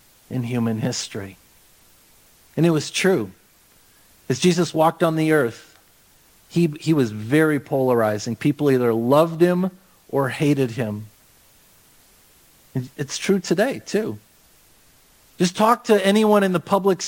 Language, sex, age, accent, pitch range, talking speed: English, male, 50-69, American, 100-155 Hz, 125 wpm